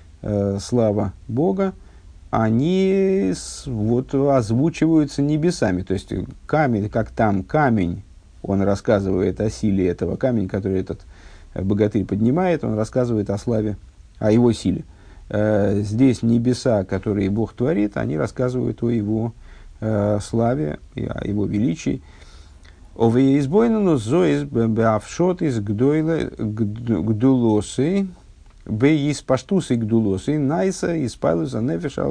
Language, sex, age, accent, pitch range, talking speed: Russian, male, 50-69, native, 95-130 Hz, 80 wpm